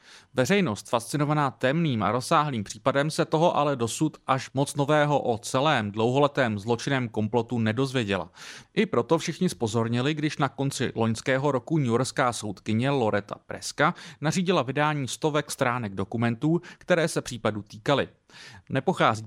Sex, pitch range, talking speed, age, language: male, 110-150 Hz, 135 wpm, 30-49, English